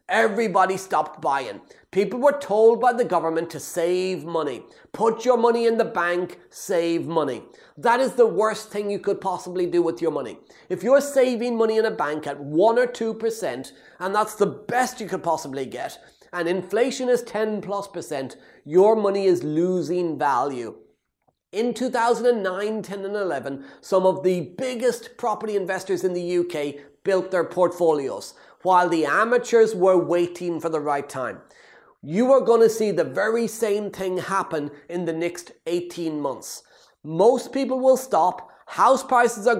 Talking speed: 165 wpm